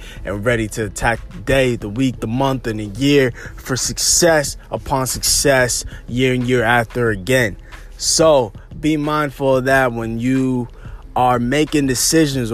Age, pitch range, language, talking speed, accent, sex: 20-39, 115-140 Hz, English, 155 wpm, American, male